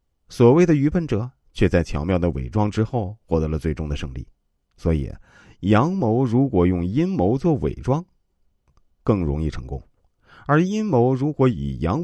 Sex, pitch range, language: male, 80-130 Hz, Chinese